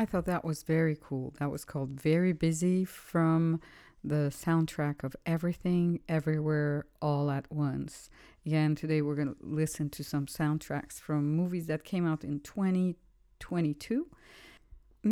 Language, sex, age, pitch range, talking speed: English, female, 50-69, 150-180 Hz, 145 wpm